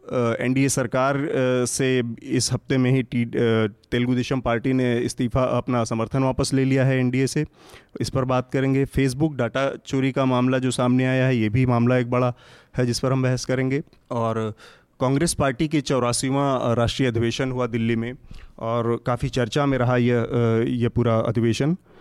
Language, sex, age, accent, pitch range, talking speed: Hindi, male, 30-49, native, 115-130 Hz, 175 wpm